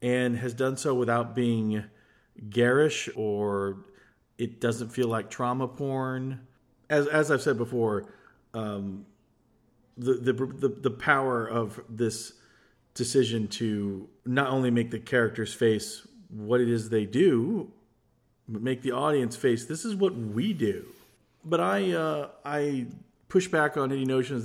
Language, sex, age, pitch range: English, male, 40-59, 110-130 Hz